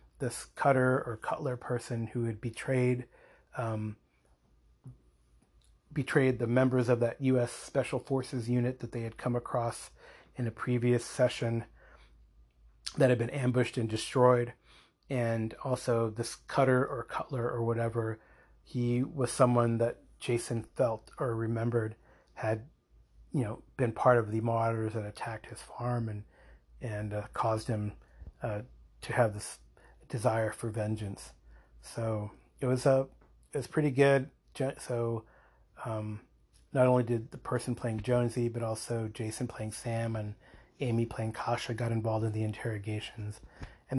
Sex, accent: male, American